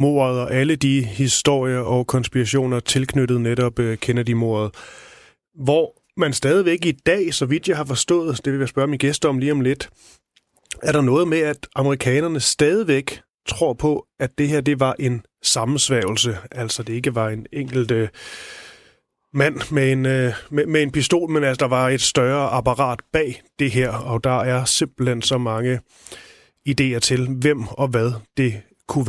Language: Danish